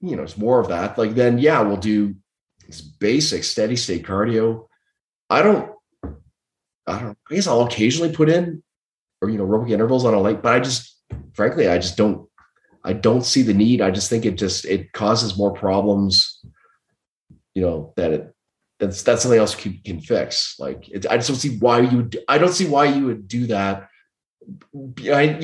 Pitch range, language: 100-125 Hz, English